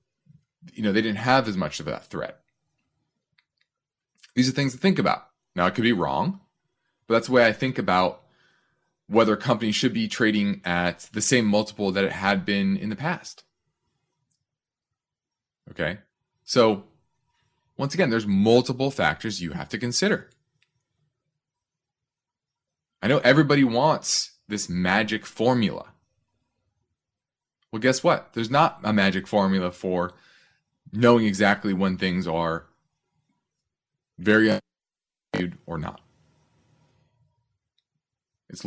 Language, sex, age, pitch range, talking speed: English, male, 30-49, 100-135 Hz, 125 wpm